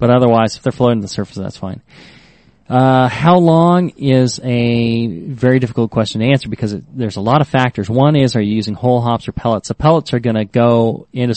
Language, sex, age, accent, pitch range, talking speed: English, male, 30-49, American, 110-130 Hz, 225 wpm